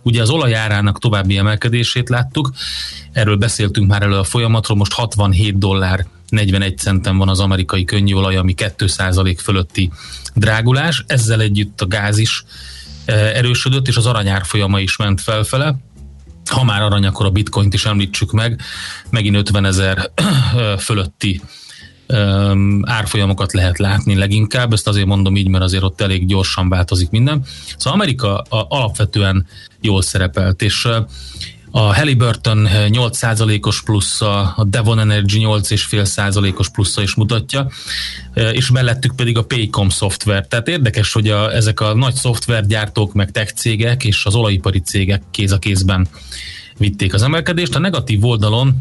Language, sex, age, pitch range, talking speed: Hungarian, male, 30-49, 95-115 Hz, 140 wpm